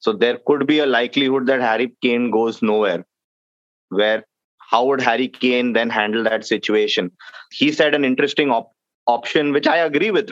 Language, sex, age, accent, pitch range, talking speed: English, male, 20-39, Indian, 120-155 Hz, 170 wpm